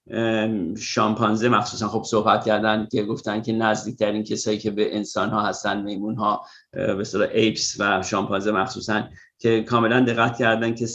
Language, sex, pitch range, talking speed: Persian, male, 110-125 Hz, 160 wpm